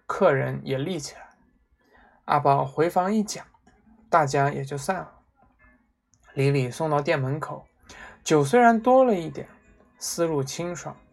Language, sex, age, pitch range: Chinese, male, 20-39, 140-195 Hz